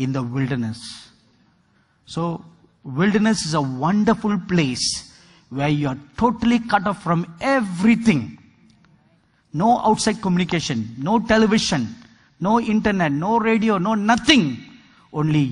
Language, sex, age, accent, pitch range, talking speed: English, male, 50-69, Indian, 135-205 Hz, 110 wpm